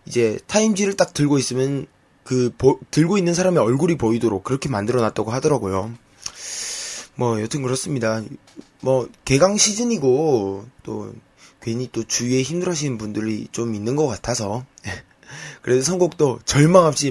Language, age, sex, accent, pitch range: Korean, 20-39, male, native, 110-150 Hz